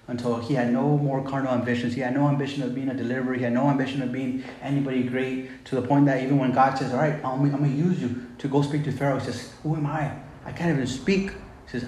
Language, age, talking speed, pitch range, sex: English, 30-49, 275 wpm, 125-140 Hz, male